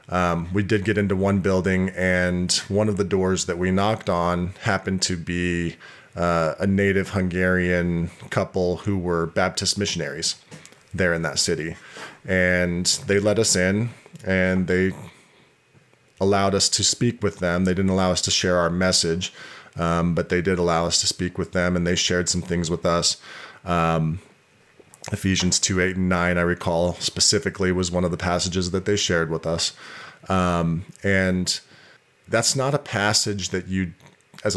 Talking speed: 170 wpm